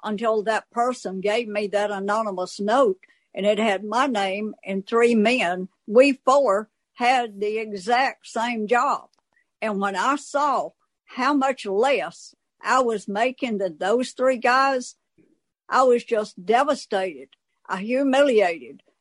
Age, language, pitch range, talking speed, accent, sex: 60-79, English, 200-255 Hz, 135 wpm, American, female